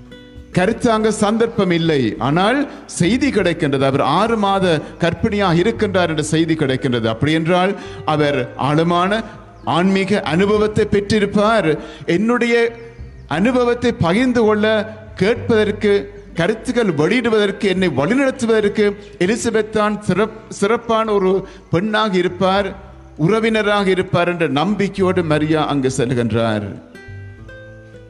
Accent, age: native, 50-69